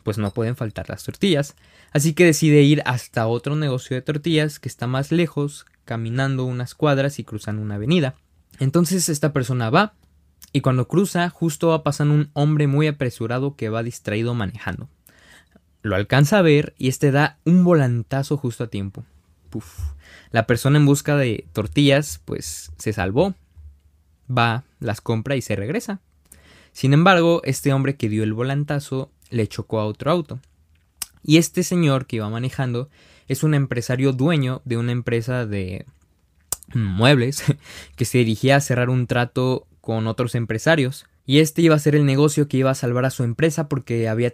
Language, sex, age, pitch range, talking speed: Spanish, male, 20-39, 110-150 Hz, 170 wpm